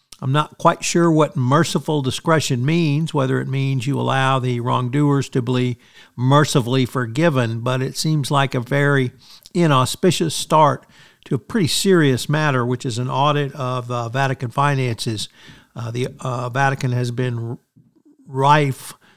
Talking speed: 145 wpm